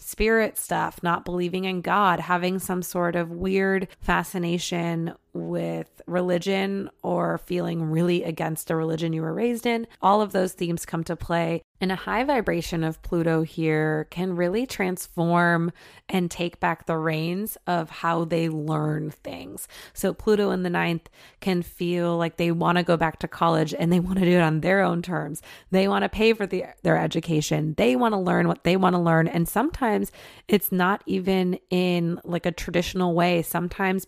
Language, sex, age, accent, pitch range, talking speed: English, female, 30-49, American, 165-190 Hz, 180 wpm